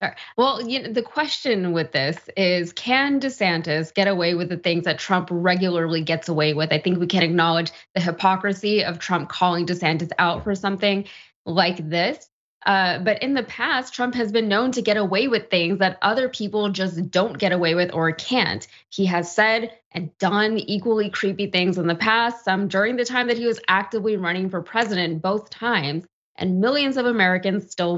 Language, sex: English, female